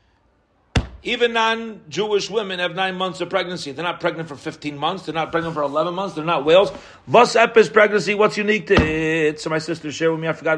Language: English